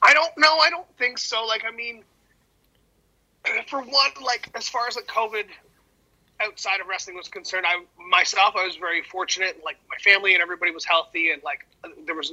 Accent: American